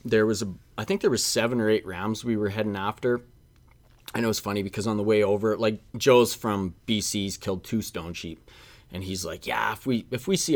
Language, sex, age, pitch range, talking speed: English, male, 30-49, 100-120 Hz, 235 wpm